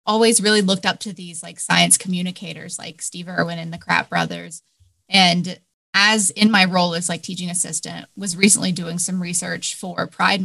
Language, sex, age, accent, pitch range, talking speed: English, female, 20-39, American, 175-205 Hz, 185 wpm